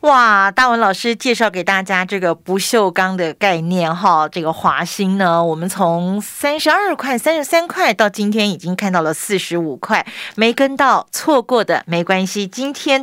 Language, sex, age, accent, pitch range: Chinese, female, 40-59, native, 190-265 Hz